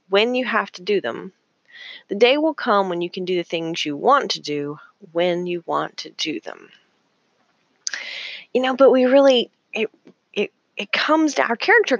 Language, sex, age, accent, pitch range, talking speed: English, female, 30-49, American, 175-240 Hz, 190 wpm